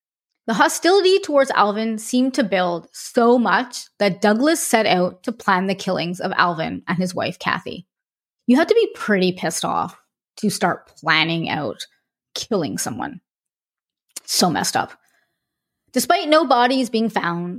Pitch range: 185-270 Hz